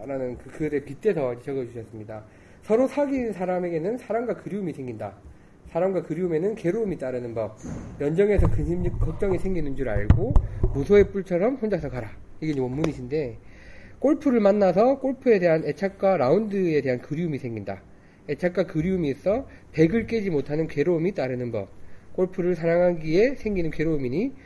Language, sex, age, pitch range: Korean, male, 40-59, 125-200 Hz